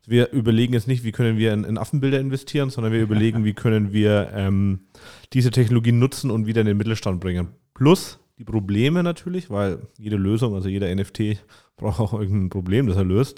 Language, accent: German, German